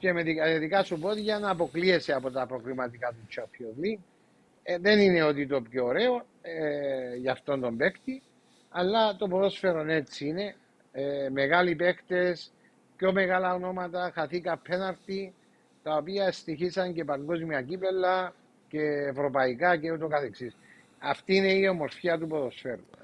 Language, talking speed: Greek, 140 wpm